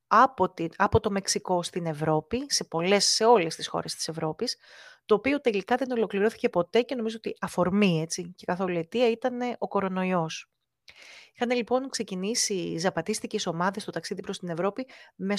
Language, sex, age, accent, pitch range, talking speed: Greek, female, 30-49, native, 180-240 Hz, 165 wpm